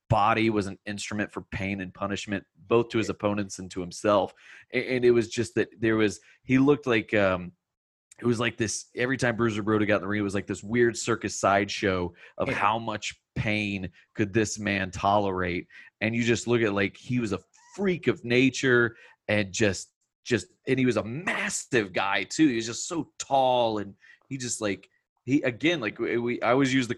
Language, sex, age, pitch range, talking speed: English, male, 30-49, 100-120 Hz, 205 wpm